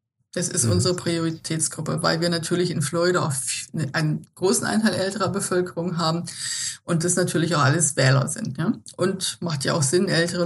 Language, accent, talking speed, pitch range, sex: German, German, 170 wpm, 165-200 Hz, female